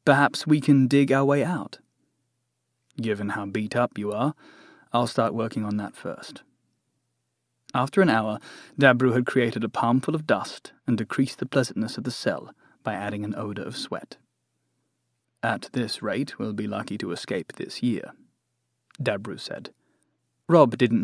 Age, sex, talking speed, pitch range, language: 30-49, male, 160 wpm, 110-140 Hz, English